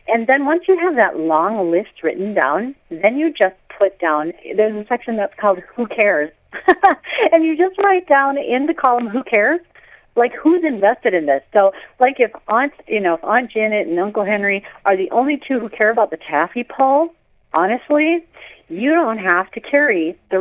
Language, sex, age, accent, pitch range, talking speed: English, female, 50-69, American, 180-285 Hz, 195 wpm